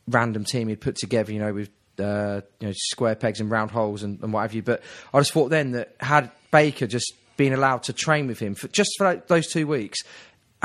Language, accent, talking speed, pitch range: English, British, 250 wpm, 115-135 Hz